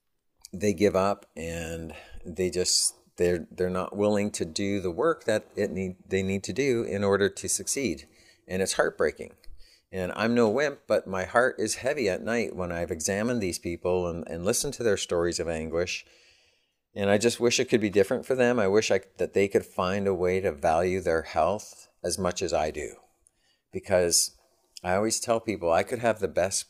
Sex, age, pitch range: male, 50-69, 85-100 Hz